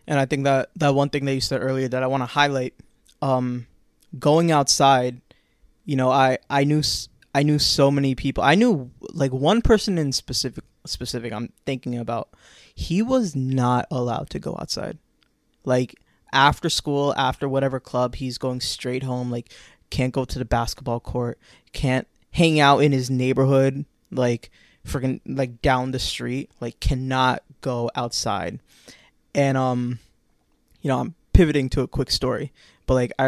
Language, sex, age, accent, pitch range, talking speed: English, male, 20-39, American, 125-140 Hz, 170 wpm